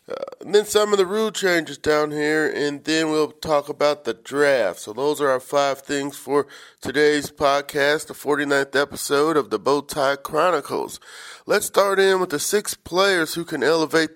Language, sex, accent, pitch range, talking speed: English, male, American, 145-175 Hz, 180 wpm